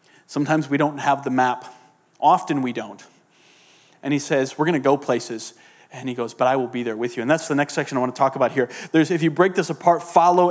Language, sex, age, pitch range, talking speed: English, male, 30-49, 130-165 Hz, 255 wpm